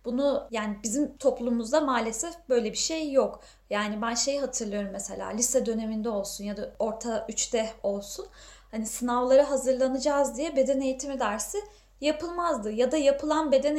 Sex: female